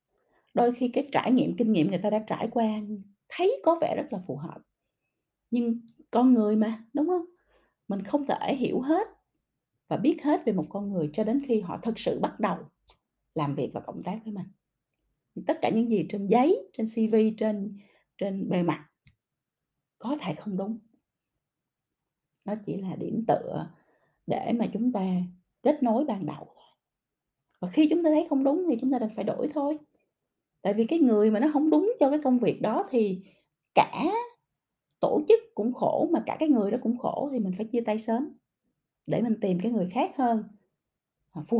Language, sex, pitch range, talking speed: Vietnamese, female, 190-260 Hz, 195 wpm